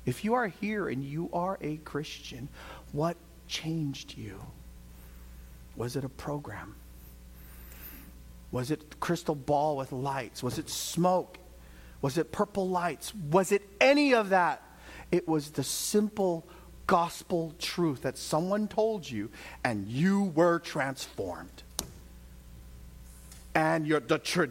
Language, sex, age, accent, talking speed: English, male, 50-69, American, 125 wpm